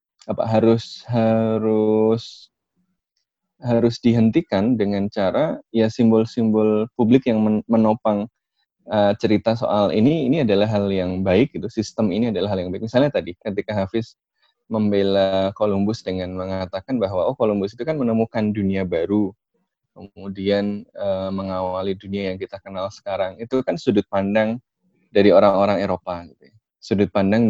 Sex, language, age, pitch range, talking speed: male, Indonesian, 20-39, 100-115 Hz, 140 wpm